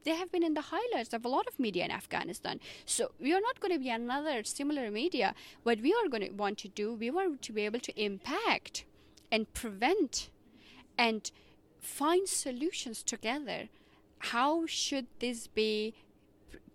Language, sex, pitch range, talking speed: English, female, 230-310 Hz, 175 wpm